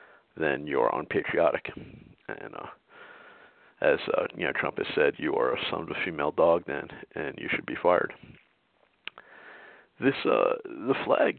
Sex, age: male, 40-59